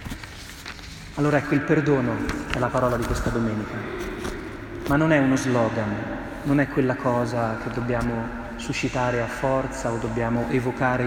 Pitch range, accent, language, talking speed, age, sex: 115-135 Hz, native, Italian, 145 wpm, 30-49, male